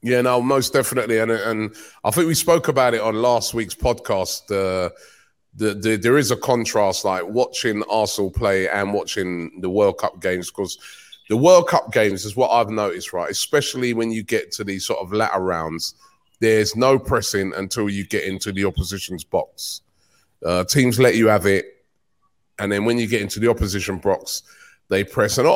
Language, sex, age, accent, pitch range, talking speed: English, male, 30-49, British, 100-120 Hz, 190 wpm